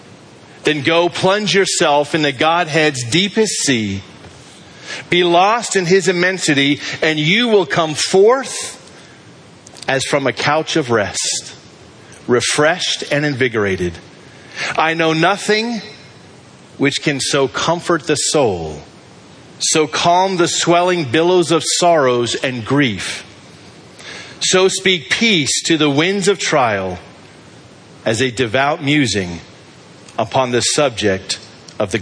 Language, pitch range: English, 115-170 Hz